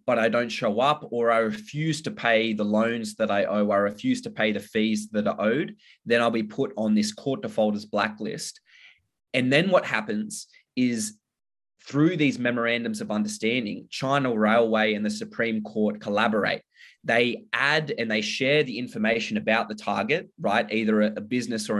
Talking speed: 180 wpm